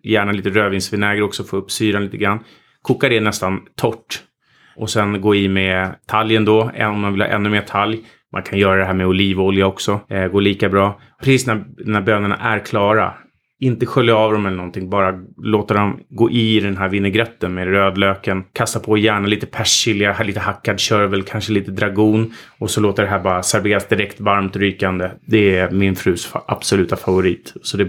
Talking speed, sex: 195 wpm, male